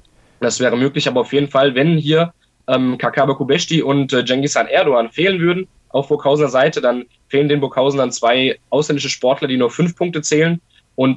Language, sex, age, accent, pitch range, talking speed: German, male, 20-39, German, 125-155 Hz, 190 wpm